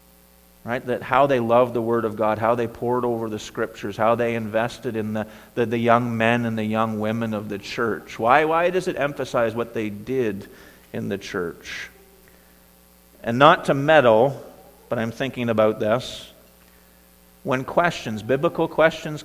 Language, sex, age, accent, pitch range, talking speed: English, male, 50-69, American, 105-130 Hz, 170 wpm